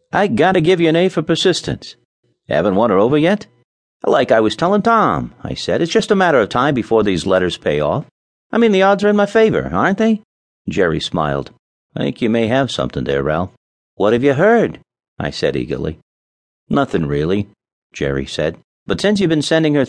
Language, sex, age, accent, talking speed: English, male, 50-69, American, 205 wpm